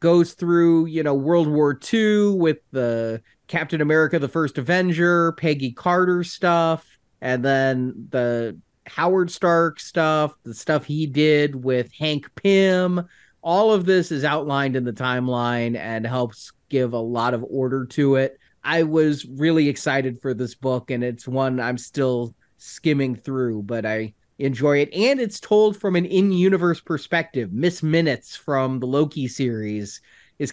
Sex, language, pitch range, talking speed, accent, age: male, English, 130-175 Hz, 155 wpm, American, 30-49